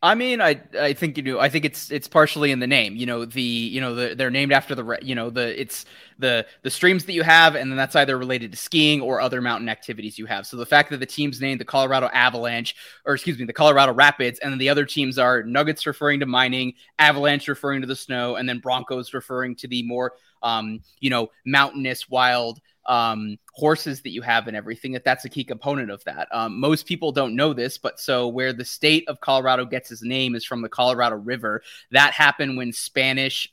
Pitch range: 125-145 Hz